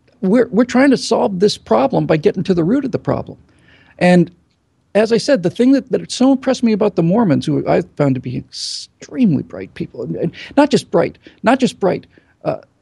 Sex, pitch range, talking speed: male, 165-220 Hz, 210 wpm